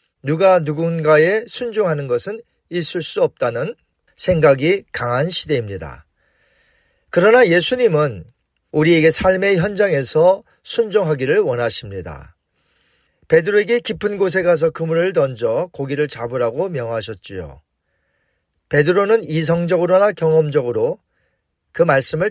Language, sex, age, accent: Korean, male, 40-59, native